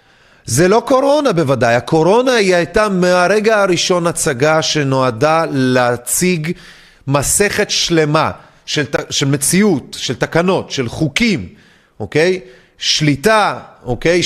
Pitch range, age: 125-205 Hz, 40-59